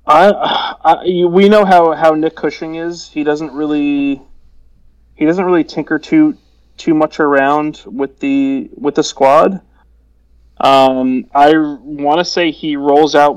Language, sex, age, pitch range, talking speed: English, male, 30-49, 125-150 Hz, 155 wpm